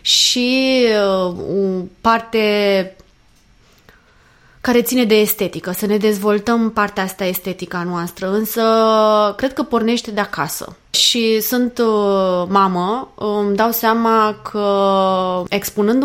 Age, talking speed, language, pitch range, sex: 20-39, 105 wpm, Romanian, 185-240 Hz, female